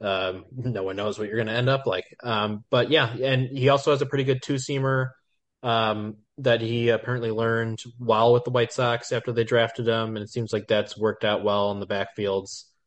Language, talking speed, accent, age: English, 225 wpm, American, 20-39